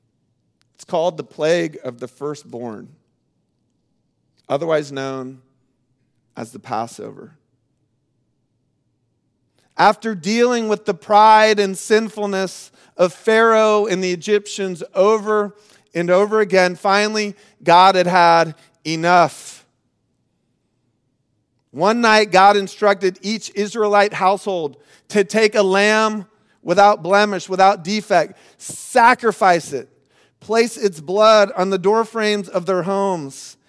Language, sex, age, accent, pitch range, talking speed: English, male, 40-59, American, 135-210 Hz, 105 wpm